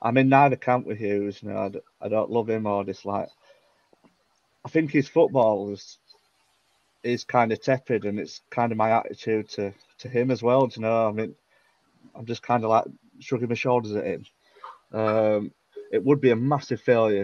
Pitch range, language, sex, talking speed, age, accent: 105-130 Hz, English, male, 200 wpm, 30-49, British